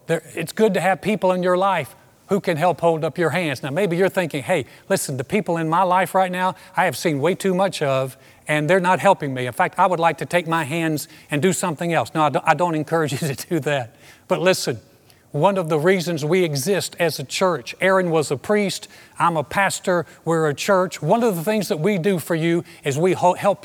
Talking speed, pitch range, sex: 240 wpm, 150-190 Hz, male